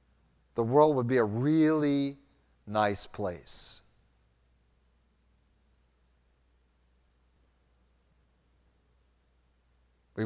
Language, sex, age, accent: English, male, 50-69, American